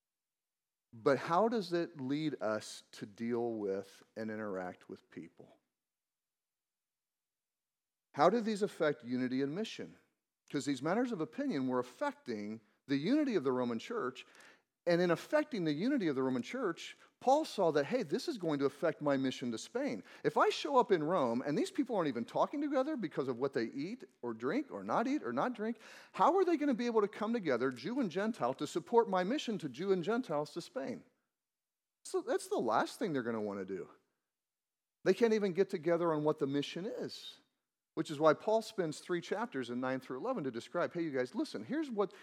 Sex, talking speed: male, 205 wpm